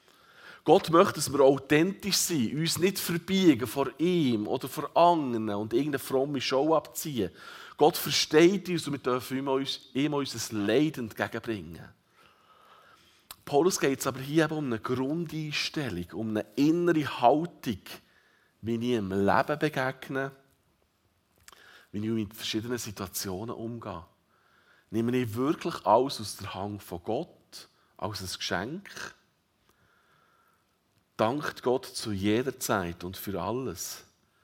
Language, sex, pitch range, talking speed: German, male, 105-155 Hz, 130 wpm